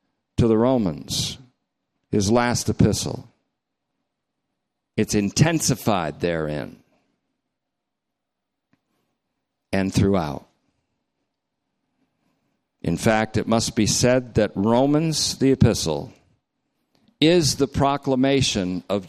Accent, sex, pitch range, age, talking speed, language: American, male, 105-135 Hz, 50-69, 80 wpm, English